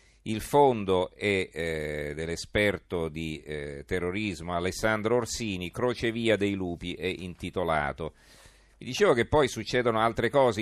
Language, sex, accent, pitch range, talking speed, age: Italian, male, native, 95-115 Hz, 125 wpm, 40-59